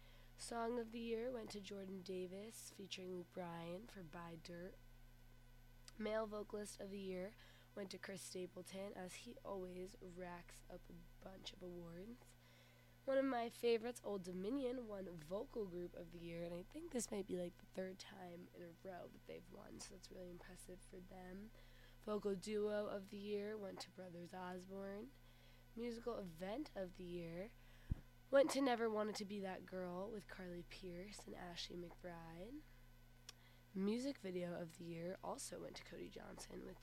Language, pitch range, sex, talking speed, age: English, 170-205 Hz, female, 170 wpm, 20-39